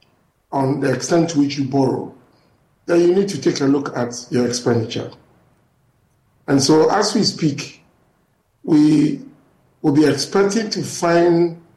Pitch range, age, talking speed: 140-185 Hz, 50-69, 145 wpm